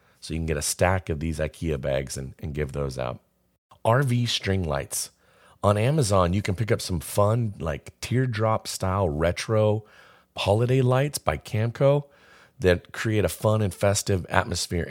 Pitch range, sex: 85-105 Hz, male